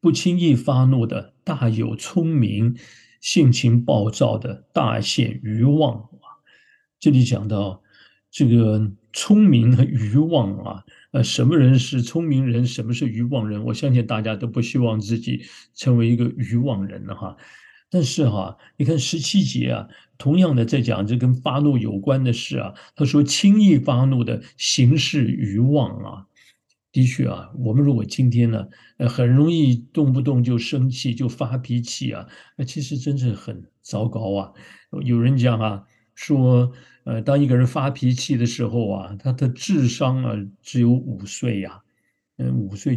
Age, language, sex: 50-69, Chinese, male